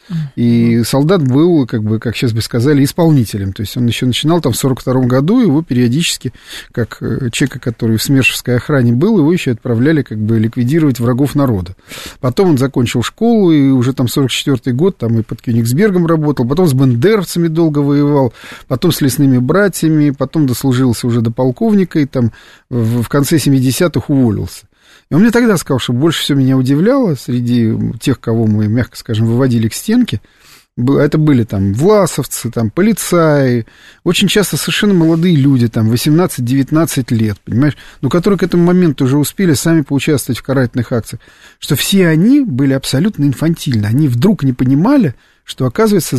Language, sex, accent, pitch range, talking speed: Russian, male, native, 125-165 Hz, 170 wpm